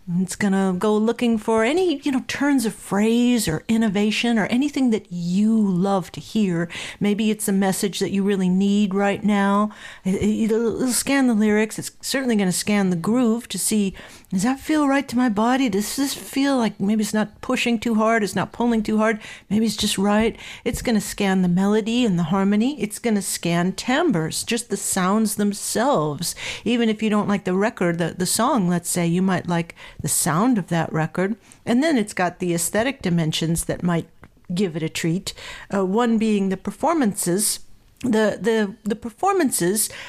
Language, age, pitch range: English, 50-69, 185-225 Hz